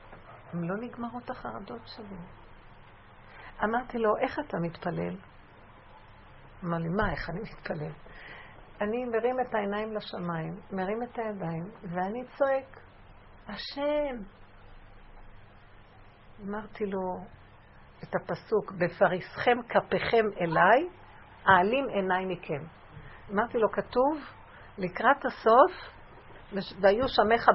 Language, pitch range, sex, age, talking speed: Hebrew, 180-245 Hz, female, 50-69, 95 wpm